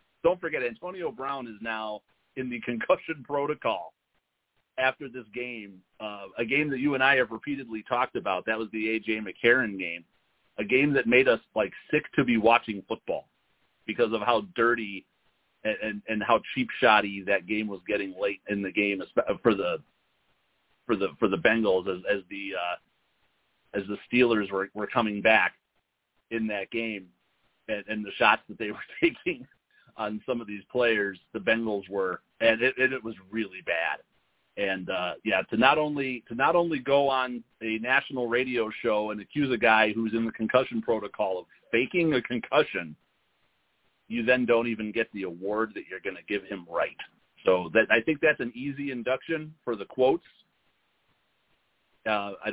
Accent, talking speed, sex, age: American, 180 wpm, male, 40-59